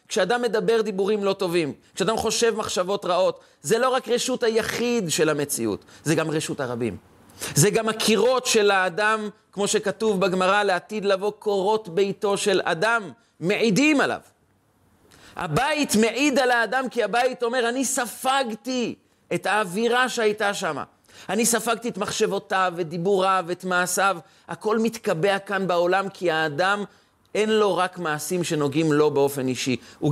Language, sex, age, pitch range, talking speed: Hebrew, male, 40-59, 165-230 Hz, 145 wpm